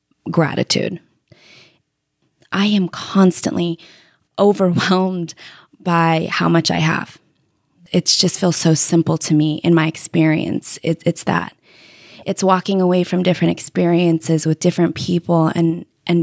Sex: female